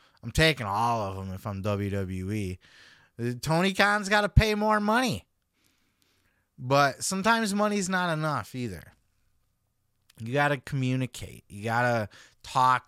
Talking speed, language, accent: 135 wpm, English, American